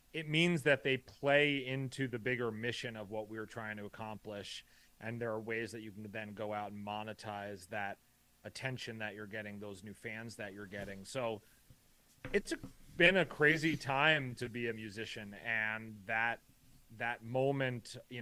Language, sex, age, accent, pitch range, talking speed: English, male, 30-49, American, 110-135 Hz, 175 wpm